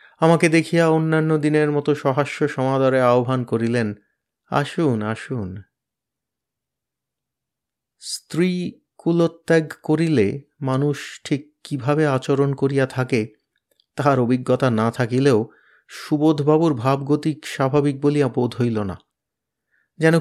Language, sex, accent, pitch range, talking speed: Bengali, male, native, 125-155 Hz, 95 wpm